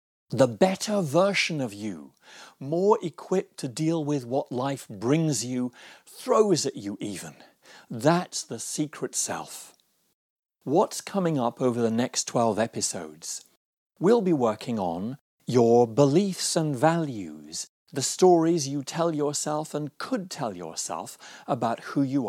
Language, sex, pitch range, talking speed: English, male, 125-175 Hz, 135 wpm